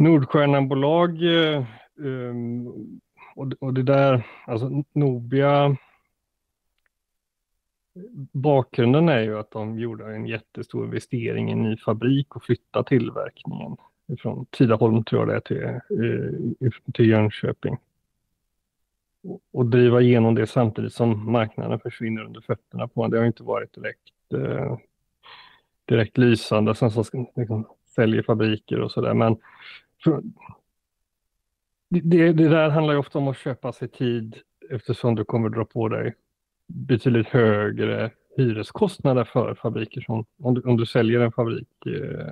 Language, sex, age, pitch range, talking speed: Swedish, male, 30-49, 110-135 Hz, 130 wpm